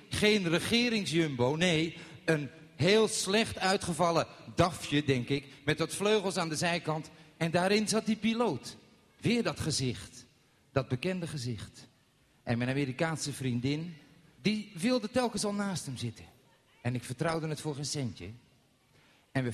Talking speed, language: 145 wpm, Dutch